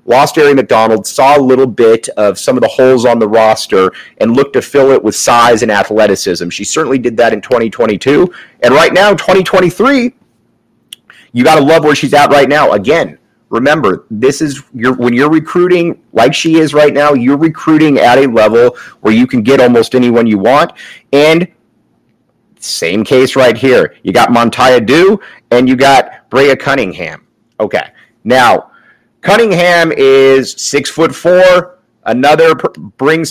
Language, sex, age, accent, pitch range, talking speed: English, male, 30-49, American, 115-150 Hz, 170 wpm